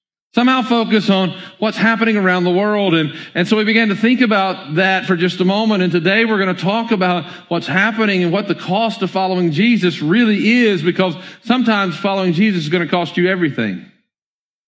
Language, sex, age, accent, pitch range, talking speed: English, male, 50-69, American, 170-220 Hz, 200 wpm